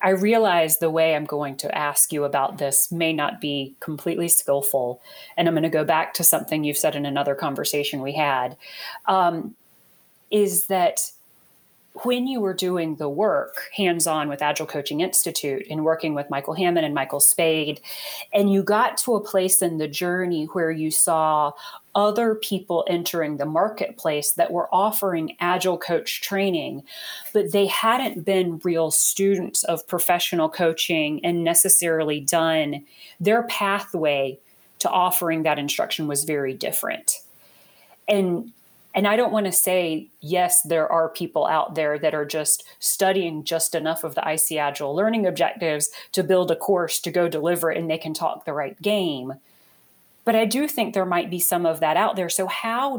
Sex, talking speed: female, 170 wpm